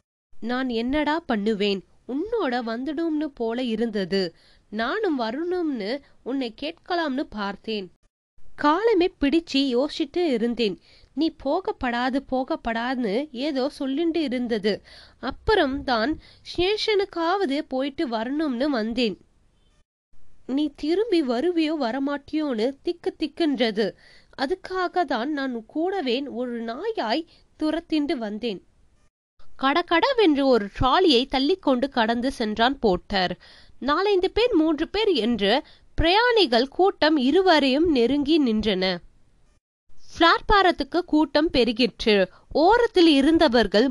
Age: 20-39